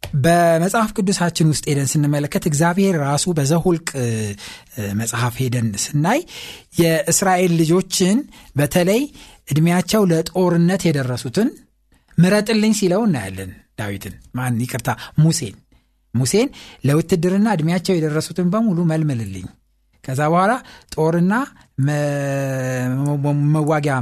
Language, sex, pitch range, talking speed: Amharic, male, 130-185 Hz, 90 wpm